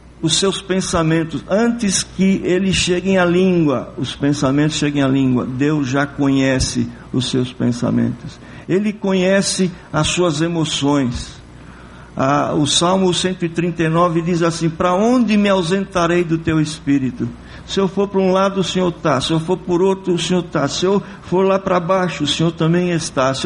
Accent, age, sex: Brazilian, 50-69, male